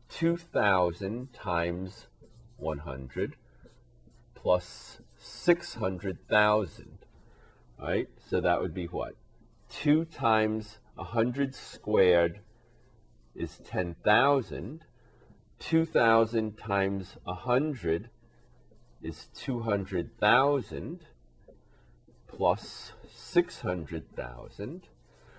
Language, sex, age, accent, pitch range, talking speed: English, male, 40-59, American, 90-120 Hz, 55 wpm